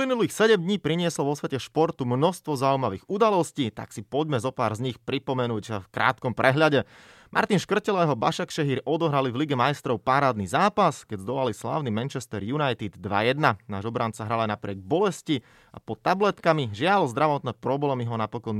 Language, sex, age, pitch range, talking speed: Slovak, male, 30-49, 115-150 Hz, 160 wpm